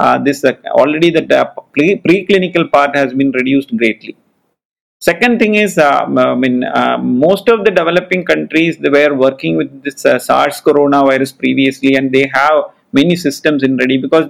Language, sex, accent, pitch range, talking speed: English, male, Indian, 130-180 Hz, 175 wpm